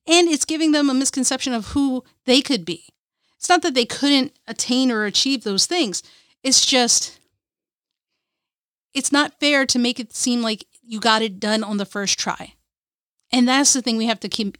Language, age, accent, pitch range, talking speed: English, 40-59, American, 230-285 Hz, 195 wpm